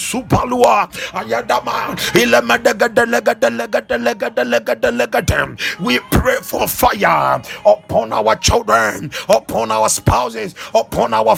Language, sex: English, male